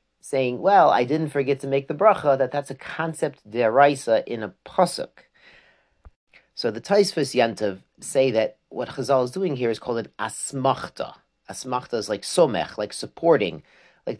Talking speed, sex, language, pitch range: 165 wpm, male, English, 110-145 Hz